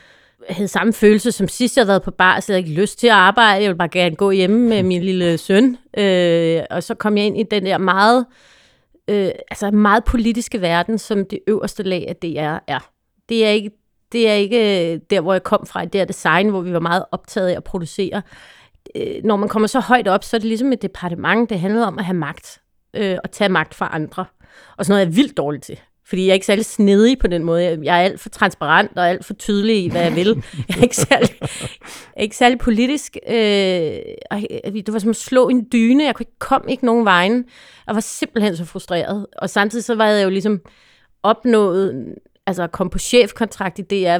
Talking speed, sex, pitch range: 230 wpm, female, 185-225 Hz